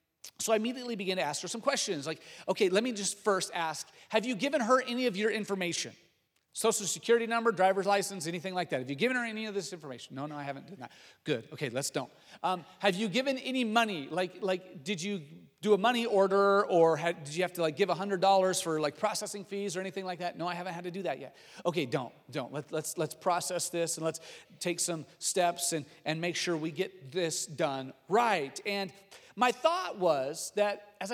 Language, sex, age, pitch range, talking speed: English, male, 40-59, 165-220 Hz, 230 wpm